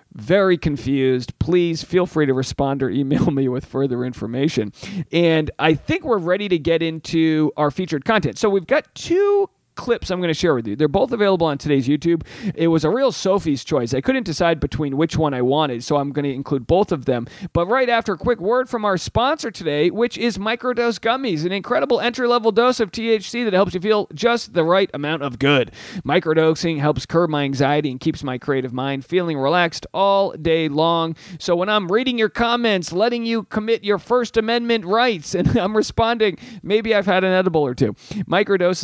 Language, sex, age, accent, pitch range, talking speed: English, male, 40-59, American, 140-205 Hz, 205 wpm